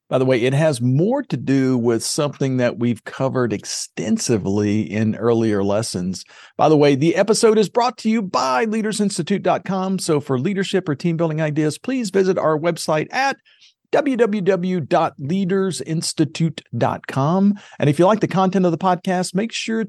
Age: 50-69